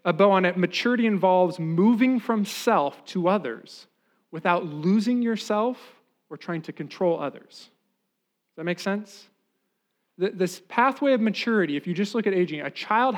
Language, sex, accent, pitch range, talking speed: English, male, American, 165-215 Hz, 160 wpm